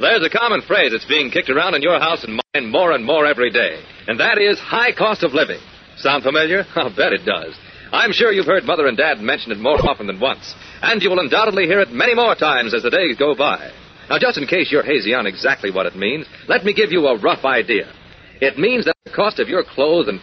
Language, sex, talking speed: English, male, 250 wpm